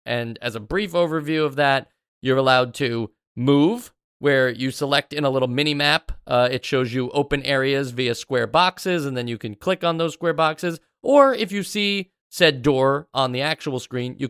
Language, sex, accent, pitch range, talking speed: English, male, American, 125-160 Hz, 200 wpm